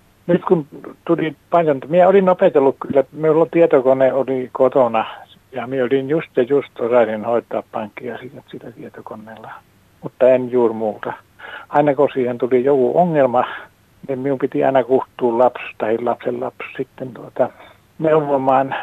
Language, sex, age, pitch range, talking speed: Finnish, male, 60-79, 115-140 Hz, 145 wpm